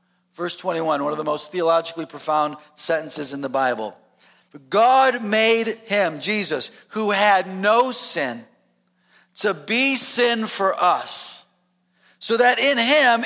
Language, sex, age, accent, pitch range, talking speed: English, male, 40-59, American, 155-230 Hz, 130 wpm